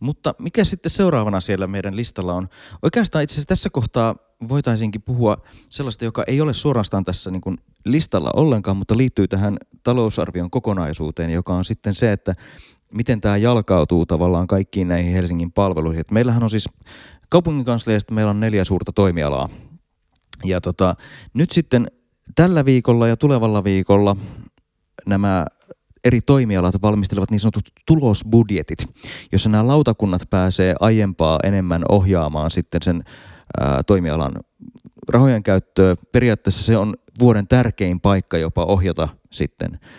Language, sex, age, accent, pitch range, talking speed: Finnish, male, 30-49, native, 90-120 Hz, 135 wpm